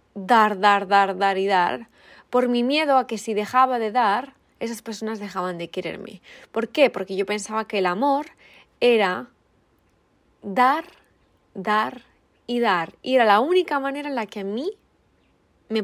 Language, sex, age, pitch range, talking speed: Spanish, female, 20-39, 200-250 Hz, 165 wpm